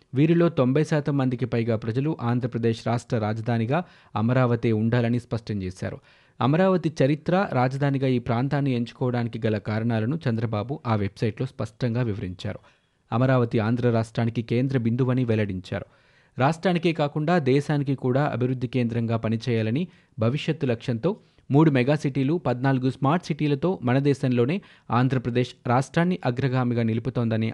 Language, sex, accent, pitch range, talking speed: Telugu, male, native, 115-140 Hz, 110 wpm